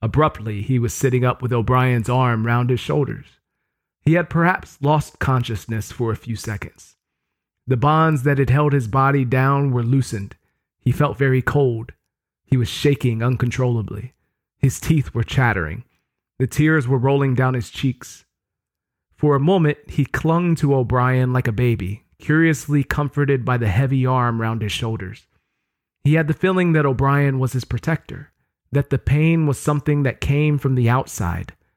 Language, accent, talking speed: English, American, 165 wpm